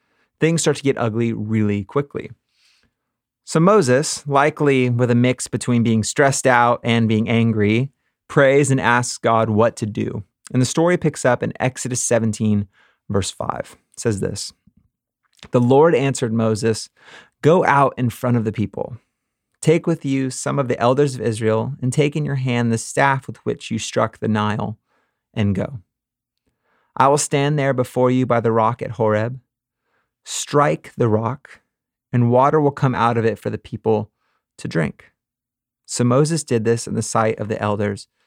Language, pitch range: English, 115-135 Hz